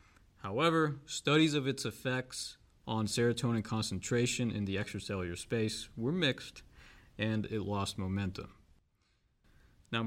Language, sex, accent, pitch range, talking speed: English, male, American, 100-125 Hz, 115 wpm